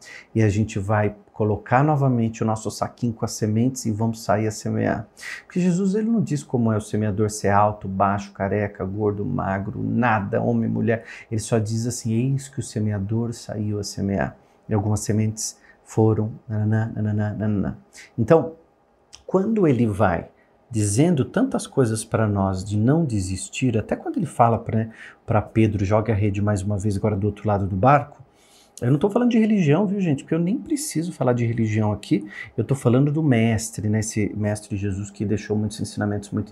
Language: Portuguese